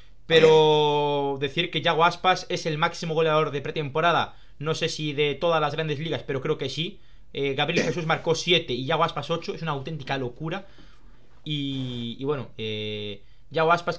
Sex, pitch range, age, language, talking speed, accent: male, 140-165 Hz, 20-39, Spanish, 180 wpm, Spanish